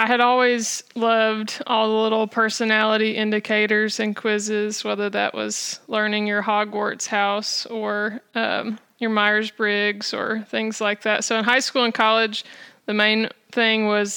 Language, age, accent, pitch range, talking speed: English, 20-39, American, 210-230 Hz, 155 wpm